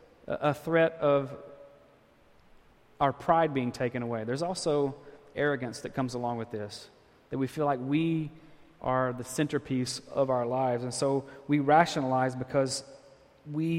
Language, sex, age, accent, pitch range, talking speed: English, male, 30-49, American, 130-165 Hz, 145 wpm